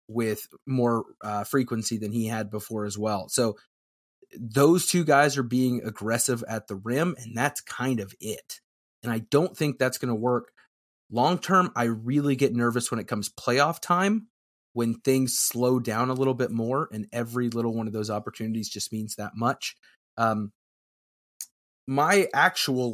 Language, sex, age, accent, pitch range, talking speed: English, male, 30-49, American, 110-140 Hz, 175 wpm